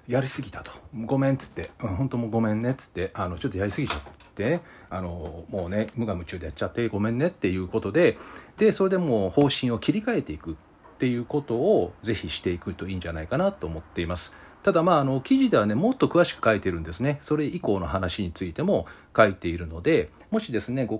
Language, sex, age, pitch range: Japanese, male, 40-59, 90-135 Hz